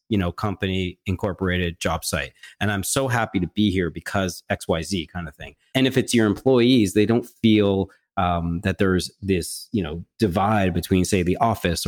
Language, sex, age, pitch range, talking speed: English, male, 40-59, 90-110 Hz, 185 wpm